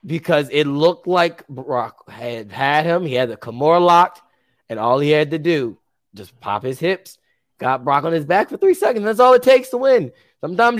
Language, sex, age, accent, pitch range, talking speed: English, male, 20-39, American, 125-165 Hz, 210 wpm